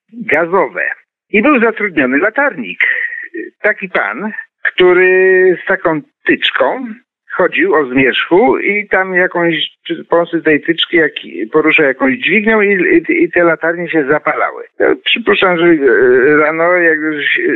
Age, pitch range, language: 50-69, 150-250 Hz, Polish